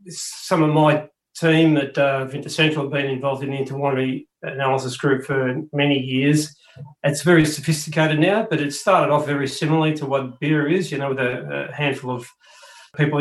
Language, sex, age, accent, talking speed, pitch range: English, male, 40-59, Australian, 185 wpm, 135-155 Hz